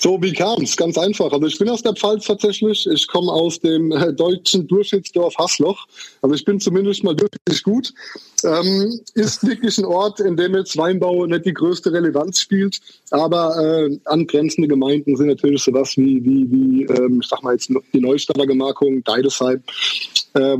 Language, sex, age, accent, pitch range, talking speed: German, male, 20-39, German, 150-190 Hz, 175 wpm